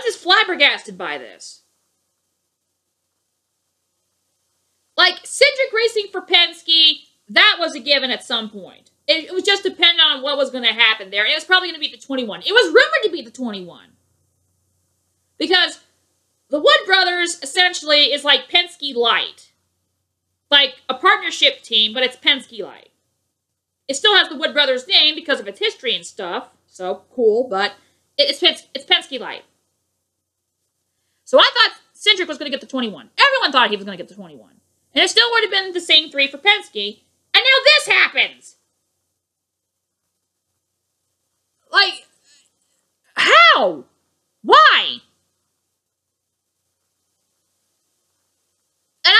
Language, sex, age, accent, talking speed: English, female, 40-59, American, 145 wpm